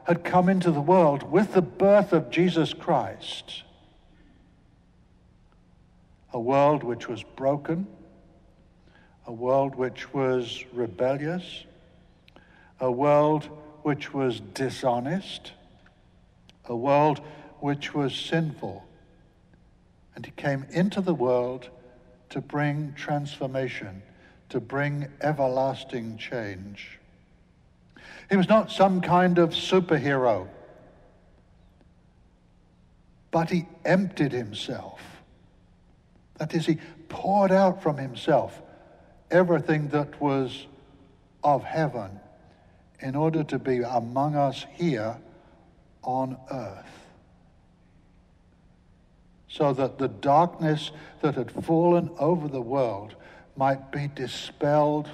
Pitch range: 120-160 Hz